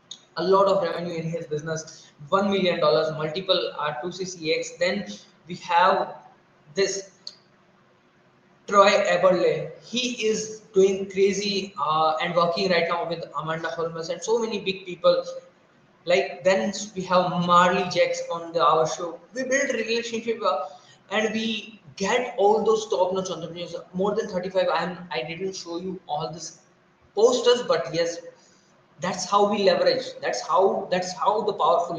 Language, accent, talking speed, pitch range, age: English, Indian, 155 wpm, 170-210 Hz, 20-39